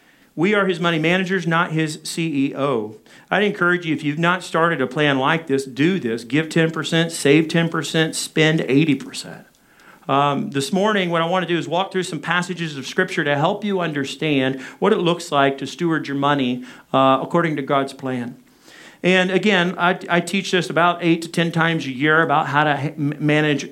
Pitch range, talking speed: 140-175 Hz, 190 wpm